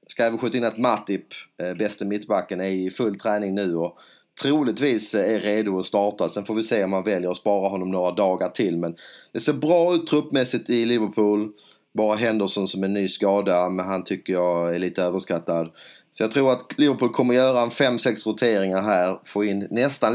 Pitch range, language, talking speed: 95-115 Hz, English, 205 wpm